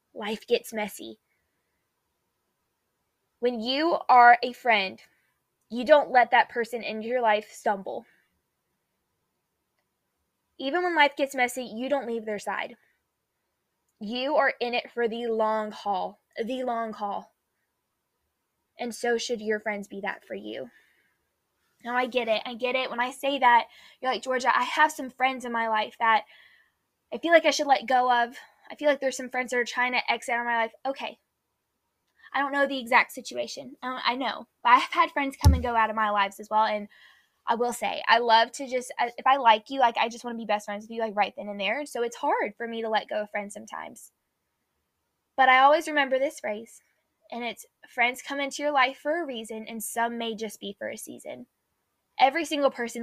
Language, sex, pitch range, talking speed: English, female, 215-265 Hz, 205 wpm